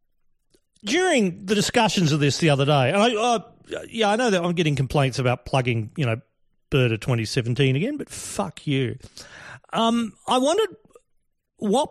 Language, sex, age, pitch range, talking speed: English, male, 40-59, 130-190 Hz, 165 wpm